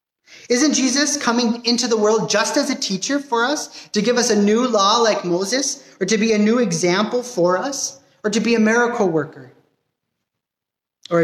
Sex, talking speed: male, 185 wpm